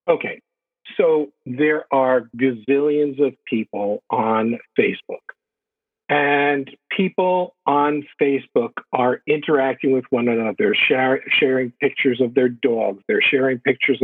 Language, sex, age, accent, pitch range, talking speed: English, male, 50-69, American, 130-150 Hz, 110 wpm